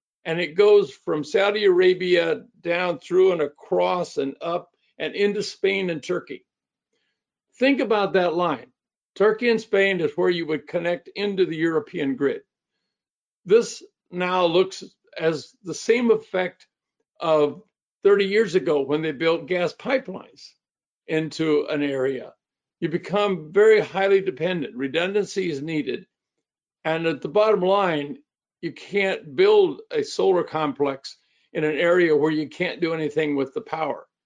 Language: English